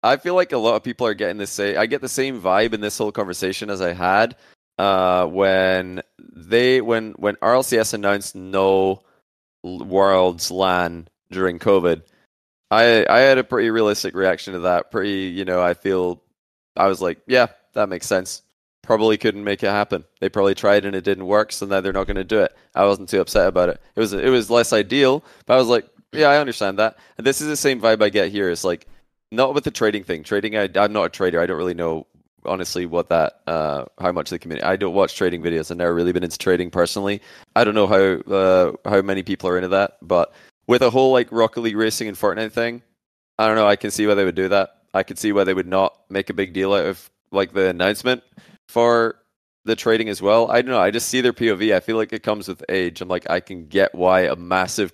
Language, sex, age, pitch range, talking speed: English, male, 20-39, 95-110 Hz, 240 wpm